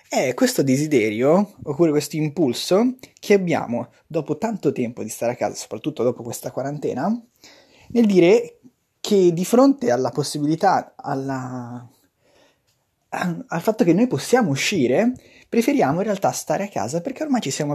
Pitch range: 135-210 Hz